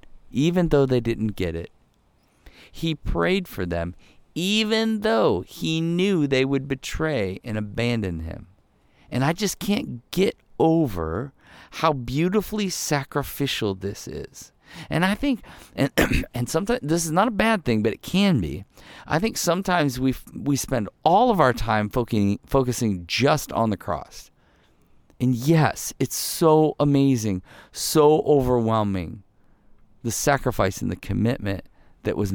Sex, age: male, 50-69